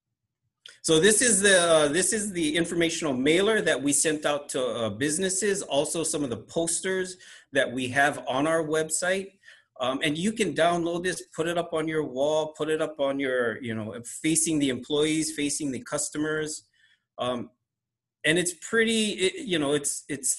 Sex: male